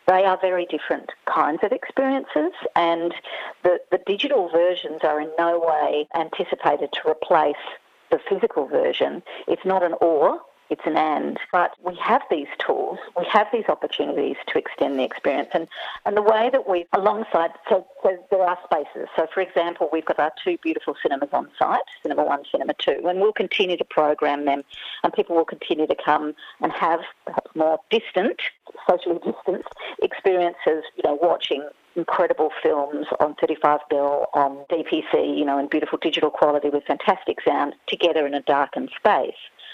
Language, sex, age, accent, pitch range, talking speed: English, female, 50-69, Australian, 155-205 Hz, 170 wpm